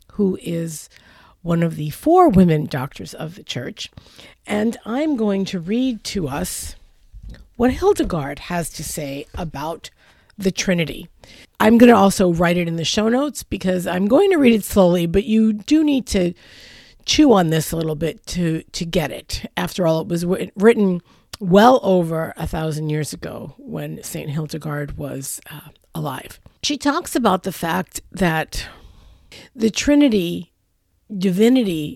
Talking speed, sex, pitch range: 160 wpm, female, 165-235 Hz